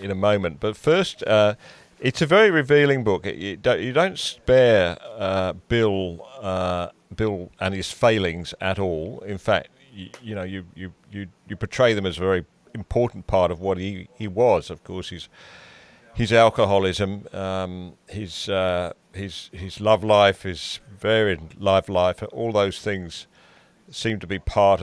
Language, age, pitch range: English, 40-59, 95-110 Hz